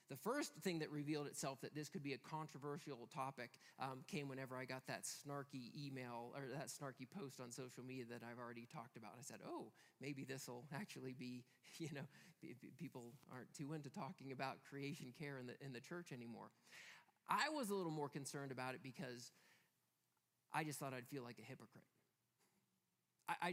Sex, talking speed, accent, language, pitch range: male, 190 wpm, American, English, 130-170 Hz